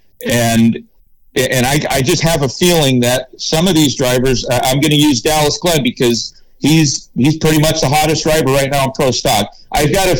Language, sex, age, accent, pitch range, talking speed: English, male, 50-69, American, 115-155 Hz, 205 wpm